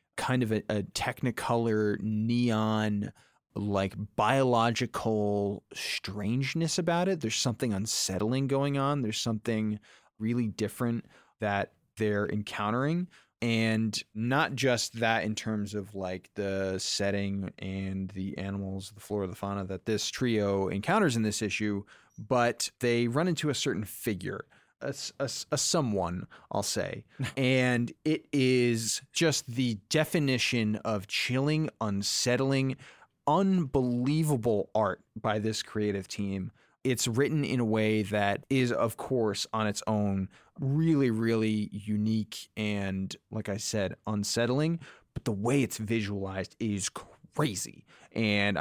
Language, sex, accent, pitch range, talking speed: English, male, American, 105-130 Hz, 125 wpm